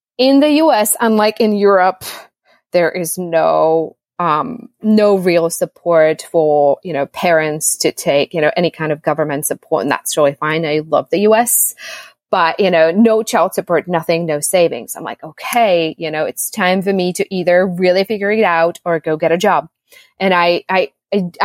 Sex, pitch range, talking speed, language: female, 170-215 Hz, 185 wpm, English